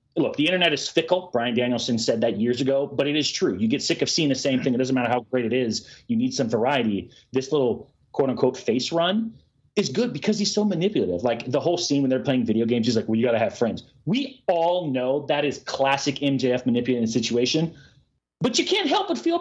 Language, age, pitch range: English, 30-49, 120-195 Hz